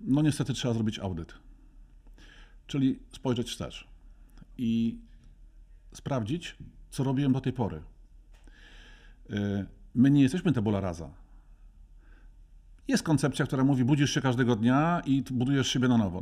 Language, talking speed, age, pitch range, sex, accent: Polish, 125 wpm, 50-69, 100-125 Hz, male, native